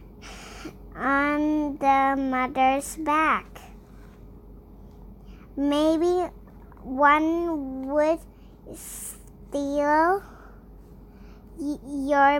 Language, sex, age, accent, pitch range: English, male, 20-39, American, 275-315 Hz